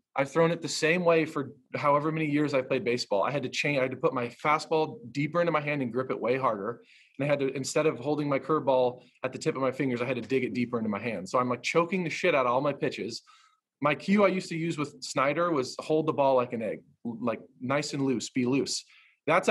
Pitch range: 130-165 Hz